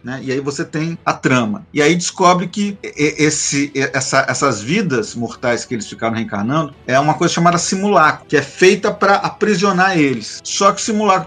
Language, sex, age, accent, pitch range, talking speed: Portuguese, male, 40-59, Brazilian, 135-200 Hz, 185 wpm